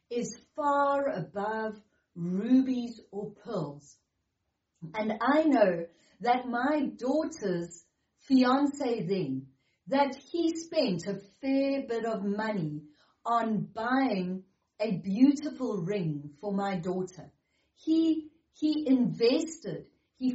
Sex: female